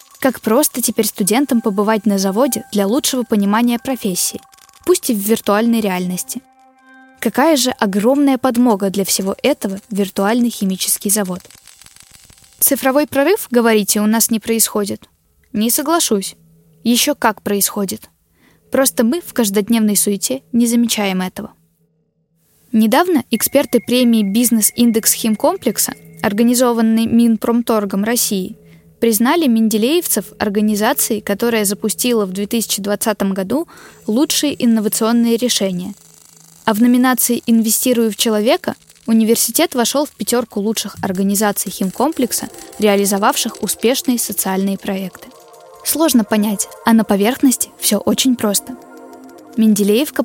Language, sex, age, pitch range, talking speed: Russian, female, 10-29, 205-250 Hz, 110 wpm